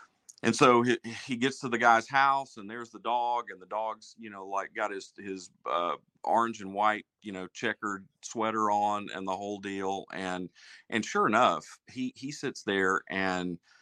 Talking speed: 190 wpm